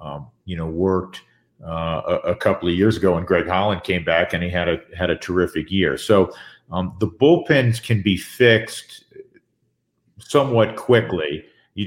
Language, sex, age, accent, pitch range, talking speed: English, male, 50-69, American, 90-105 Hz, 170 wpm